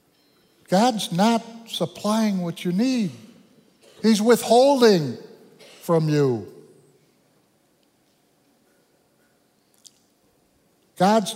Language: English